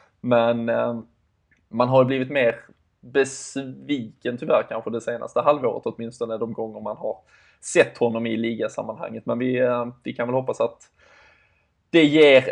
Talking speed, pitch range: 145 wpm, 115-130 Hz